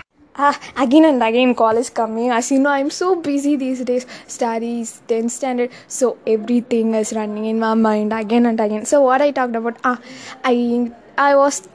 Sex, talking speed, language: female, 190 wpm, Tamil